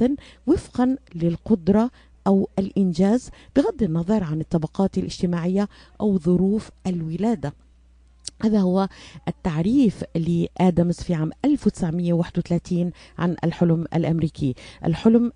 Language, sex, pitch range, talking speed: Arabic, female, 160-195 Hz, 90 wpm